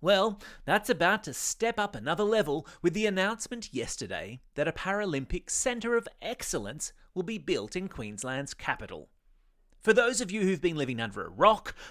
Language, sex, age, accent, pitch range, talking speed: English, male, 30-49, Australian, 140-205 Hz, 170 wpm